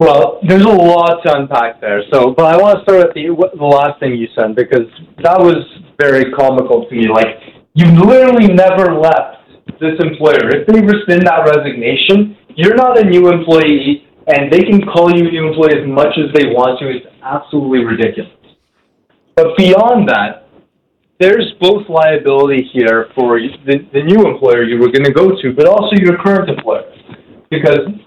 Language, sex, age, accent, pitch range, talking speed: English, male, 30-49, American, 135-190 Hz, 180 wpm